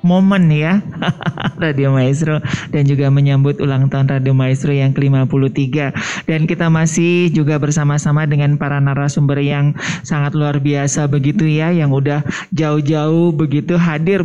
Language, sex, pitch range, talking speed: Indonesian, male, 130-160 Hz, 135 wpm